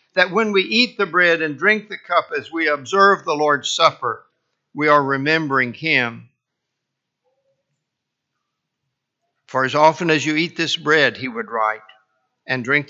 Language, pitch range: English, 150-195 Hz